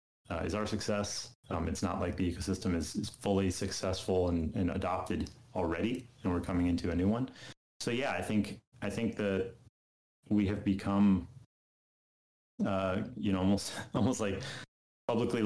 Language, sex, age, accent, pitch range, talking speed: English, male, 30-49, American, 90-105 Hz, 165 wpm